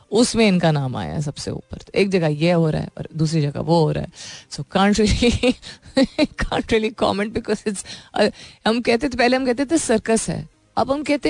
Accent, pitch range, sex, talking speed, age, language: native, 150-205 Hz, female, 200 wpm, 30-49, Hindi